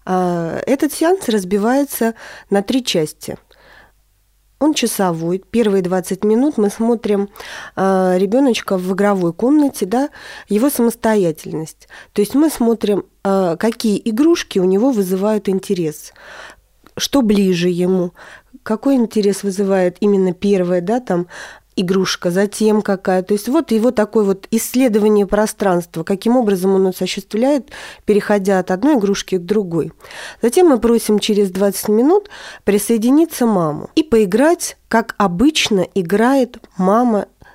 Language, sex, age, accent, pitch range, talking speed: Russian, female, 30-49, native, 195-250 Hz, 120 wpm